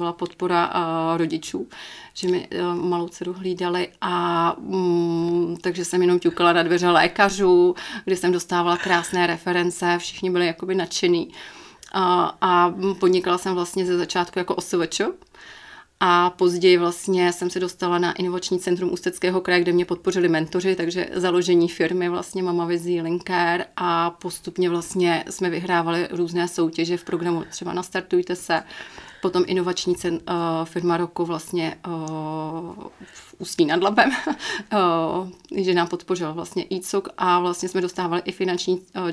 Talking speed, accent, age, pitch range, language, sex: 145 wpm, native, 30-49, 175-185 Hz, Czech, female